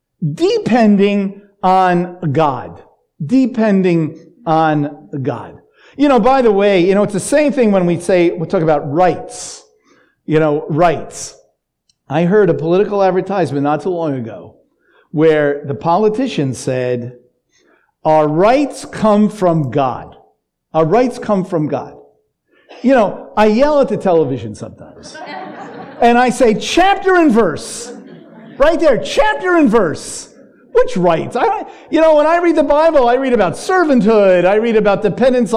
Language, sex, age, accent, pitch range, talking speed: English, male, 50-69, American, 165-260 Hz, 145 wpm